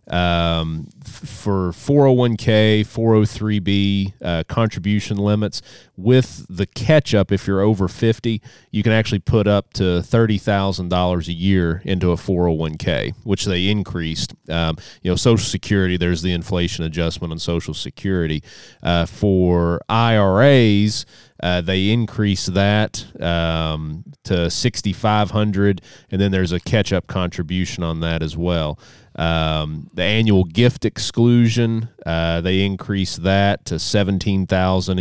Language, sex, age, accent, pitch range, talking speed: English, male, 30-49, American, 90-115 Hz, 125 wpm